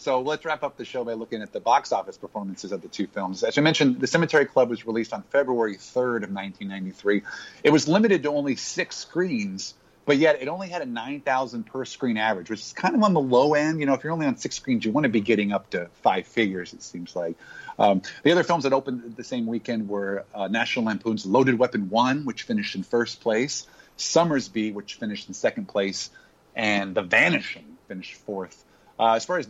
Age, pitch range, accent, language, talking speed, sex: 30-49, 105-150 Hz, American, English, 225 wpm, male